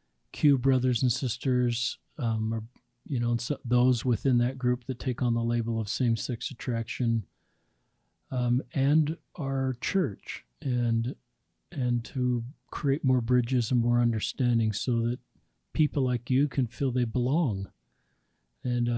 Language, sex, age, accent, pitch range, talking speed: English, male, 40-59, American, 115-130 Hz, 140 wpm